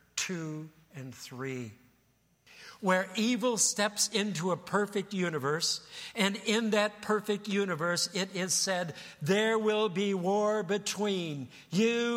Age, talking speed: 60-79, 120 wpm